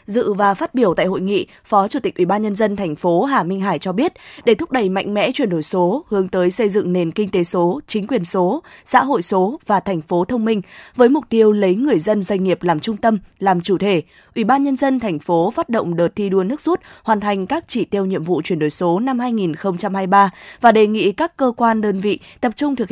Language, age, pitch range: Vietnamese, 20-39, 185-235 Hz